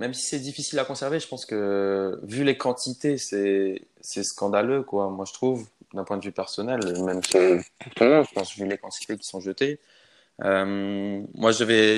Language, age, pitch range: French, 20-39, 95-120 Hz